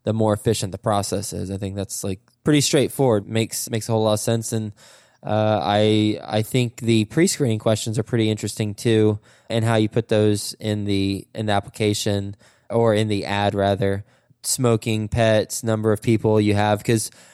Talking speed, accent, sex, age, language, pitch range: 190 wpm, American, male, 20-39, English, 100-115 Hz